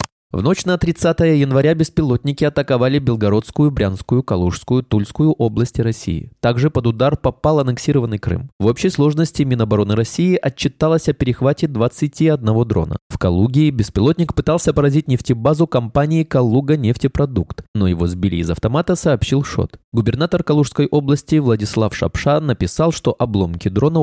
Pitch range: 105-150 Hz